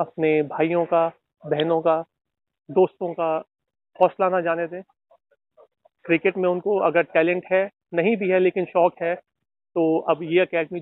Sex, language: male, English